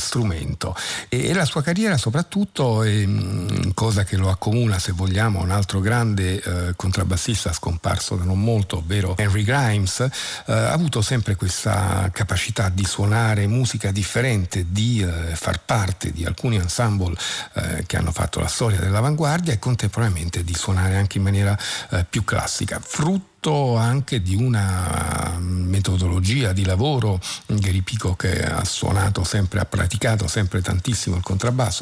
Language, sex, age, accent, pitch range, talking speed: Italian, male, 50-69, native, 95-115 Hz, 150 wpm